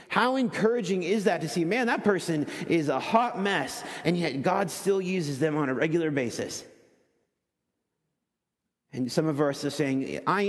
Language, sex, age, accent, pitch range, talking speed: English, male, 30-49, American, 125-160 Hz, 170 wpm